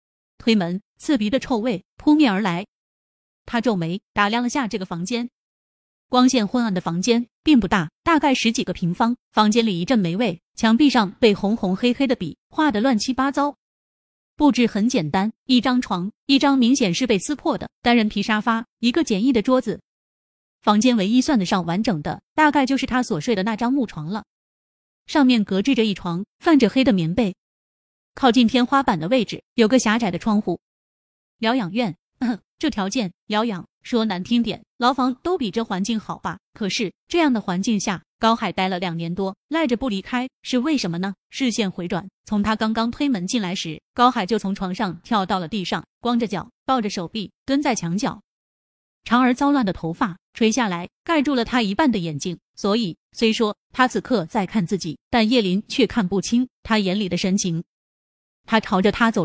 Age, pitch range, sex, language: 20-39, 190-250 Hz, female, Chinese